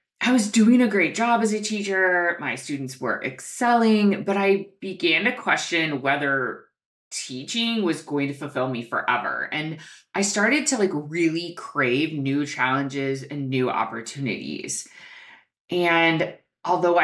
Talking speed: 140 wpm